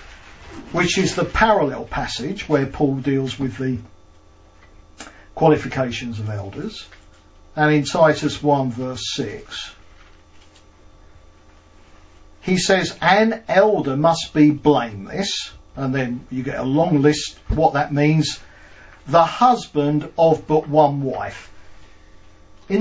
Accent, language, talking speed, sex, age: British, English, 115 wpm, male, 50-69